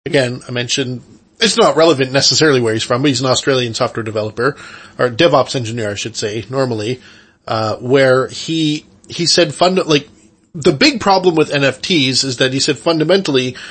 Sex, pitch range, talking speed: male, 130-170 Hz, 175 wpm